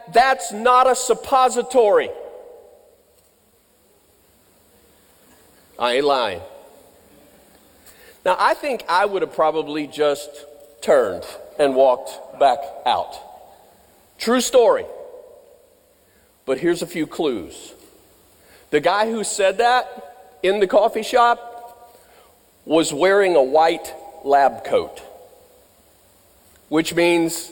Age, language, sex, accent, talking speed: 50-69, English, male, American, 95 wpm